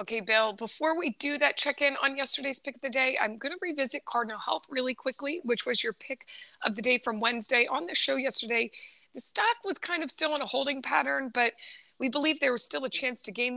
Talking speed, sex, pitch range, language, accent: 240 wpm, female, 220-265 Hz, English, American